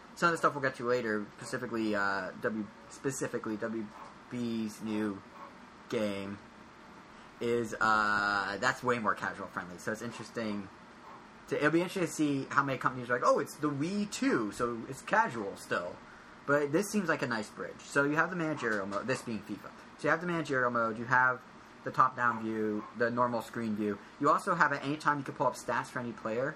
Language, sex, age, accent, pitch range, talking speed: English, male, 20-39, American, 110-145 Hz, 195 wpm